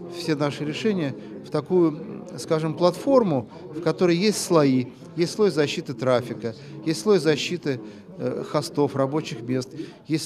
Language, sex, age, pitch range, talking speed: Russian, male, 40-59, 130-170 Hz, 135 wpm